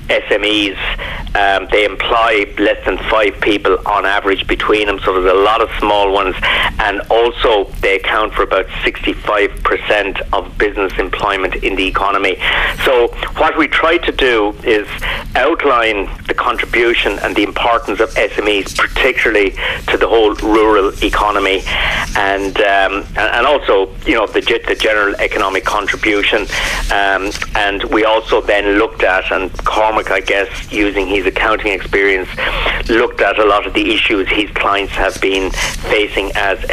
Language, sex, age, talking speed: English, male, 50-69, 150 wpm